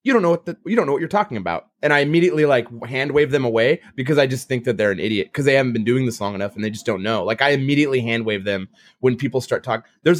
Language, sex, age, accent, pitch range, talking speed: English, male, 30-49, American, 115-160 Hz, 305 wpm